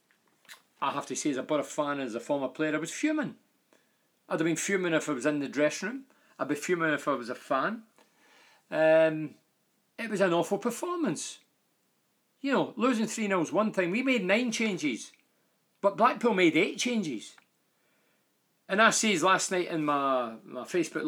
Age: 40-59